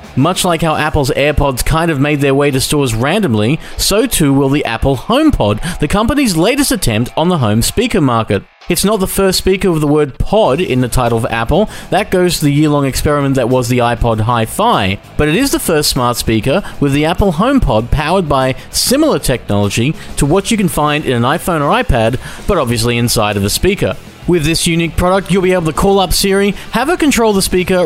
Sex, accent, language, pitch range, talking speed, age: male, Australian, English, 125-180 Hz, 215 wpm, 30-49